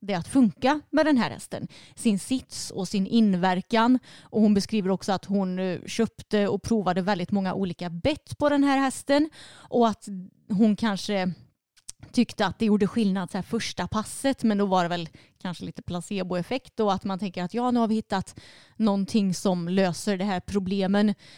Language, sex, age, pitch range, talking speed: Swedish, female, 30-49, 185-220 Hz, 185 wpm